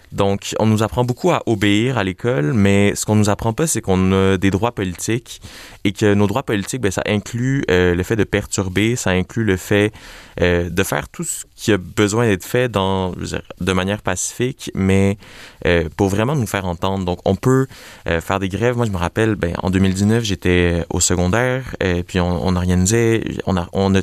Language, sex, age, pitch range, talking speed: French, male, 20-39, 90-110 Hz, 220 wpm